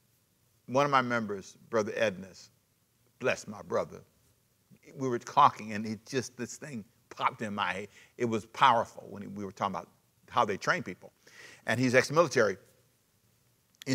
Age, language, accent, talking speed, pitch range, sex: 60-79, English, American, 160 wpm, 110-135 Hz, male